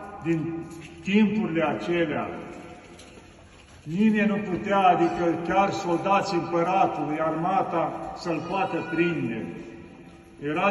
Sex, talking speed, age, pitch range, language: male, 85 wpm, 50-69, 165-205 Hz, Romanian